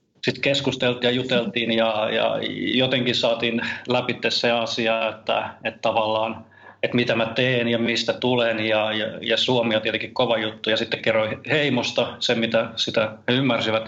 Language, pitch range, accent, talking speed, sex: Finnish, 110-120 Hz, native, 165 wpm, male